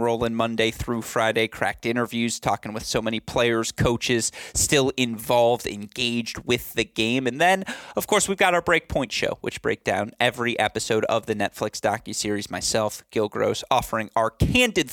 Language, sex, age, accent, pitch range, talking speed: English, male, 30-49, American, 110-150 Hz, 170 wpm